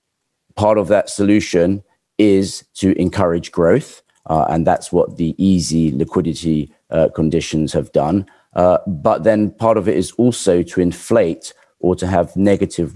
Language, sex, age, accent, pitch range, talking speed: English, male, 40-59, British, 85-100 Hz, 155 wpm